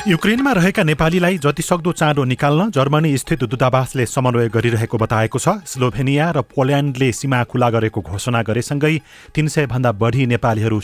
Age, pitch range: 30-49, 115-140 Hz